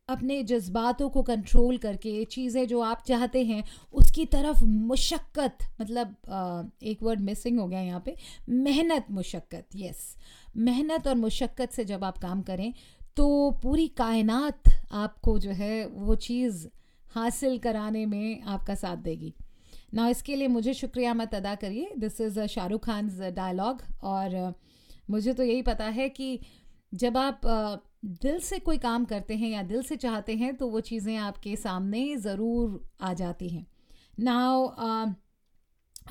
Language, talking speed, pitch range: Hindi, 150 wpm, 210-255 Hz